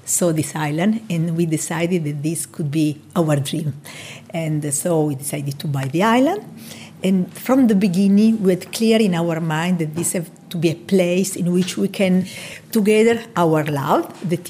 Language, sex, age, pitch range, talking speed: English, female, 50-69, 160-205 Hz, 190 wpm